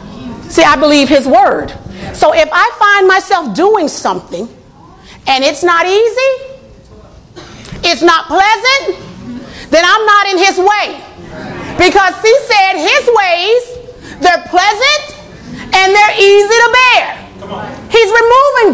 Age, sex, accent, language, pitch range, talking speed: 40-59, female, American, English, 290-420 Hz, 125 wpm